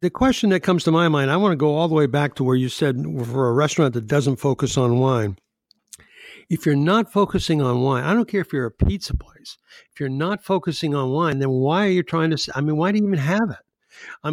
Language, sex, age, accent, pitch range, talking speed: English, male, 60-79, American, 130-170 Hz, 260 wpm